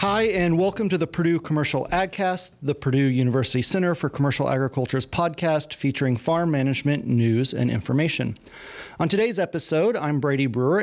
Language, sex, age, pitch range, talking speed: English, male, 30-49, 130-175 Hz, 155 wpm